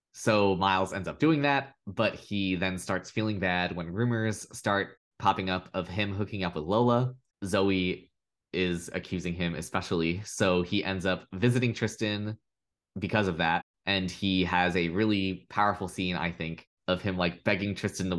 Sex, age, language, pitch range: male, 20-39, English, 90-110 Hz